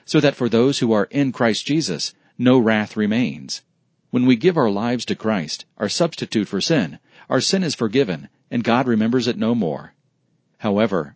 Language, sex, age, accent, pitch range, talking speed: English, male, 40-59, American, 110-135 Hz, 185 wpm